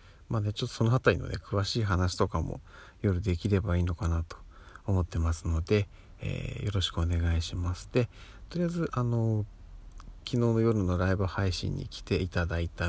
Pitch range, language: 90-110 Hz, Japanese